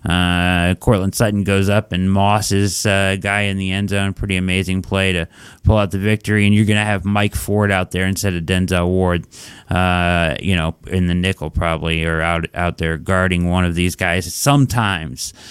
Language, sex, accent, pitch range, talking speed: English, male, American, 95-130 Hz, 205 wpm